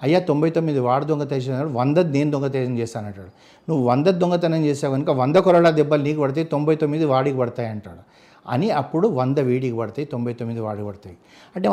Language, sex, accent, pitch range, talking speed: Telugu, male, native, 120-150 Hz, 180 wpm